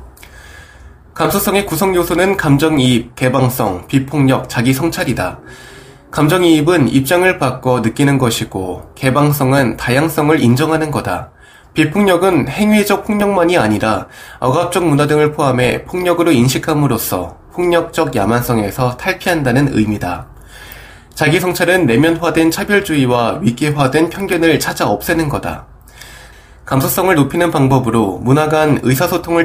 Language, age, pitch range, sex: Korean, 20-39, 120-165 Hz, male